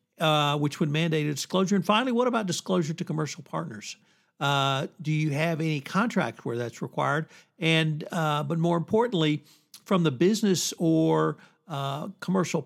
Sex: male